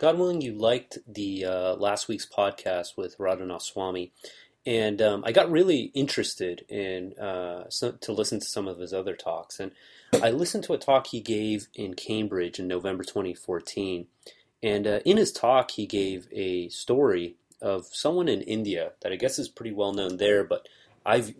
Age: 30-49